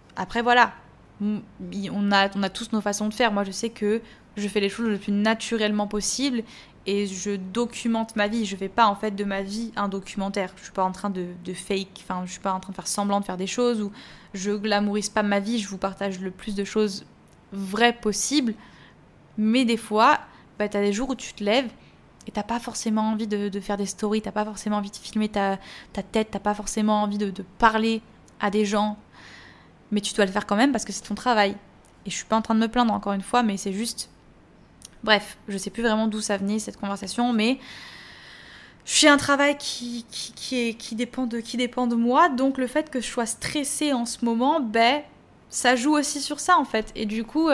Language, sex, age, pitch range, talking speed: French, female, 20-39, 205-235 Hz, 245 wpm